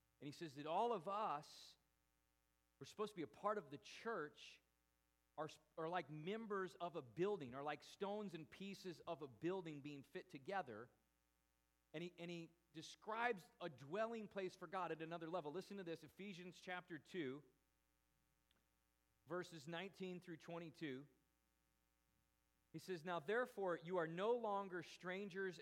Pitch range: 145-190 Hz